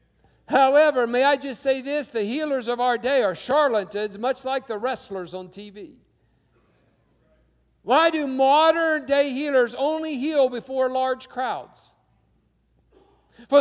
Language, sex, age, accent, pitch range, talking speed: English, male, 60-79, American, 175-270 Hz, 130 wpm